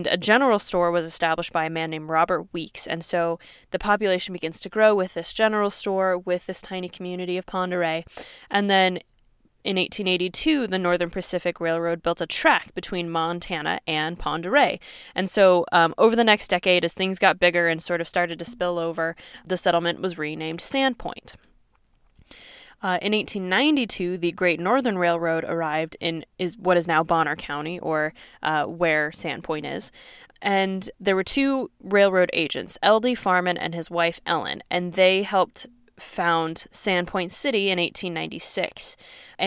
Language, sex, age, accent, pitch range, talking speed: English, female, 10-29, American, 165-190 Hz, 165 wpm